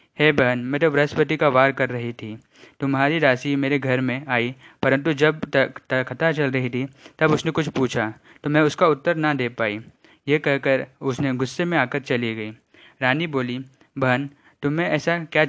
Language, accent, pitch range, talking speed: Hindi, native, 130-150 Hz, 190 wpm